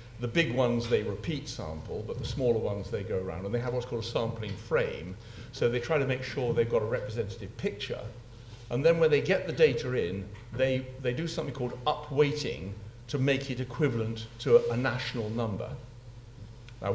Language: English